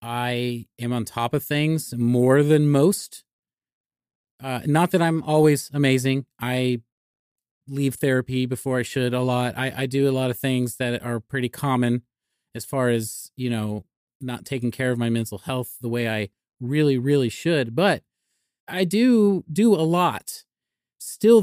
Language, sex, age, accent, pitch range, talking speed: English, male, 30-49, American, 120-145 Hz, 165 wpm